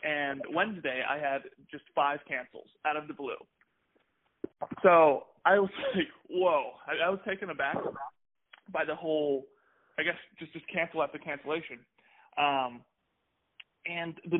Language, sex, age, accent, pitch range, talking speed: English, male, 20-39, American, 135-165 Hz, 140 wpm